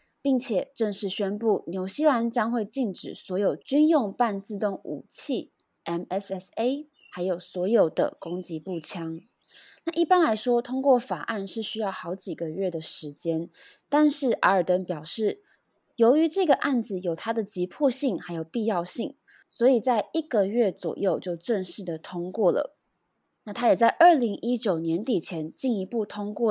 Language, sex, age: Chinese, female, 20-39